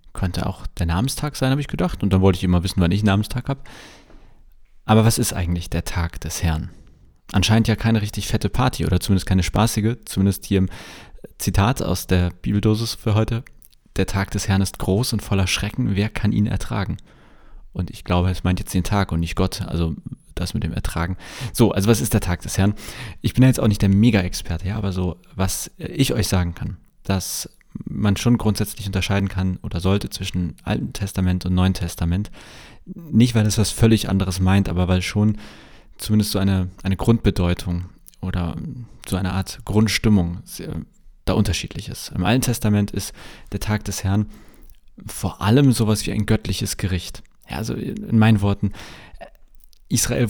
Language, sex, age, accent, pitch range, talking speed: German, male, 30-49, German, 90-110 Hz, 185 wpm